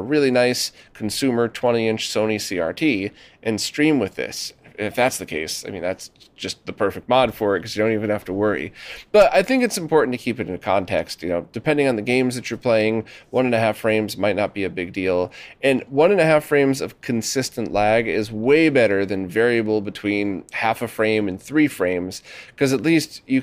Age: 30-49